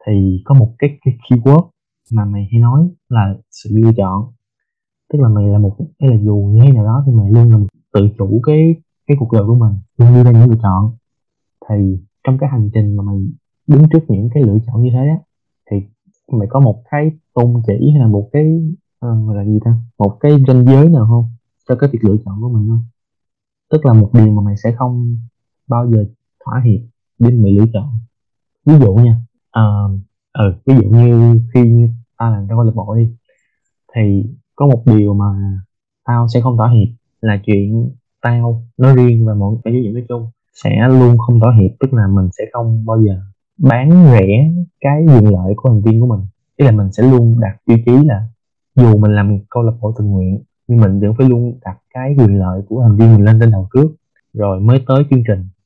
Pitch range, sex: 105-130 Hz, male